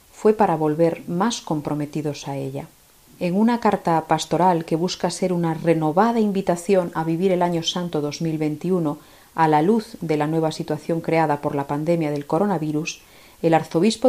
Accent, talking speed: Spanish, 160 wpm